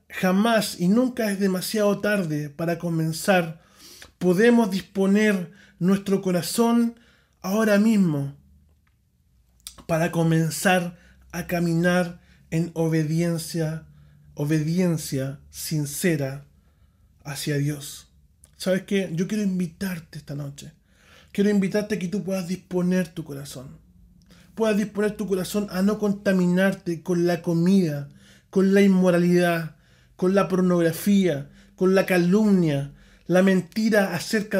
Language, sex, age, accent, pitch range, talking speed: Spanish, male, 30-49, Argentinian, 160-205 Hz, 110 wpm